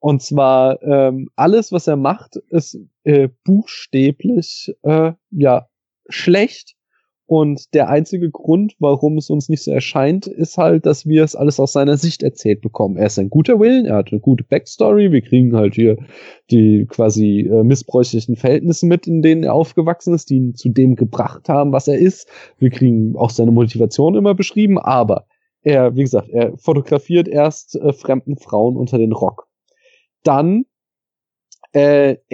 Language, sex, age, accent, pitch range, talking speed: German, male, 20-39, German, 135-175 Hz, 165 wpm